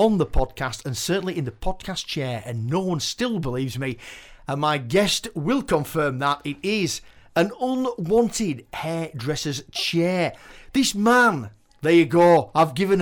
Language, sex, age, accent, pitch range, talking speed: English, male, 40-59, British, 140-210 Hz, 155 wpm